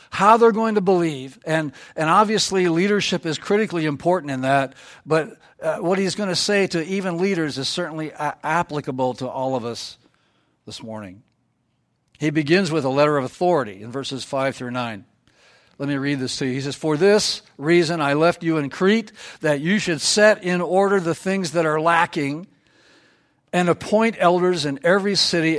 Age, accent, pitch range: 60-79, American, 145-180 Hz